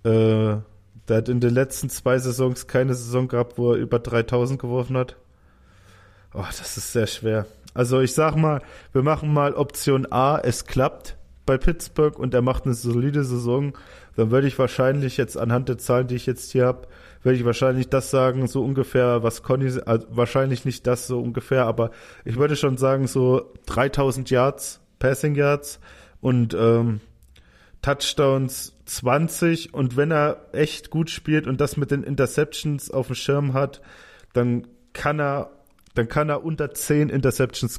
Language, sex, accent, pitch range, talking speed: German, male, German, 120-140 Hz, 165 wpm